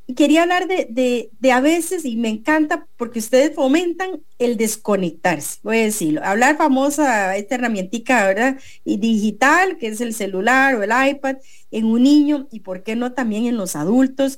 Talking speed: 180 wpm